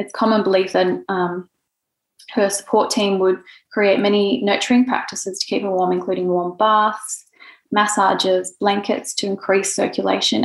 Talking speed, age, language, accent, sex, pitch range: 145 wpm, 20-39, English, Australian, female, 185-220 Hz